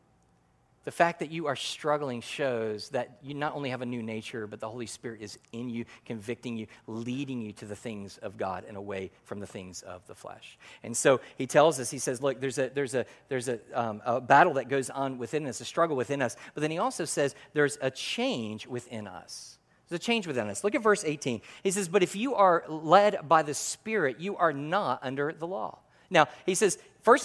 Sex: male